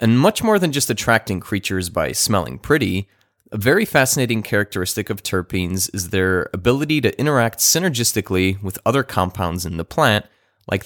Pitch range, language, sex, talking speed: 95-120 Hz, English, male, 160 wpm